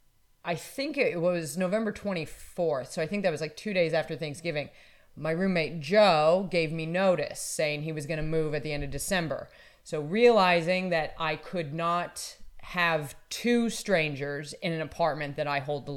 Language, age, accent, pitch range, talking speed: English, 30-49, American, 140-170 Hz, 185 wpm